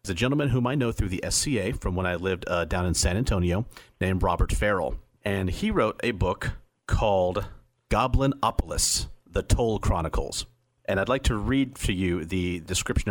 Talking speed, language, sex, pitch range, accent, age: 185 wpm, English, male, 90-125 Hz, American, 40-59